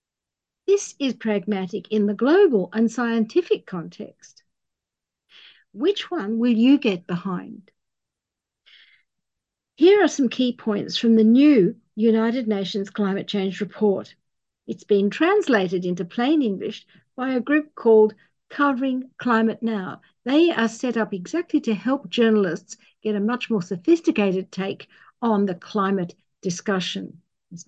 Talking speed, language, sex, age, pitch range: 130 wpm, English, female, 50-69, 195-245 Hz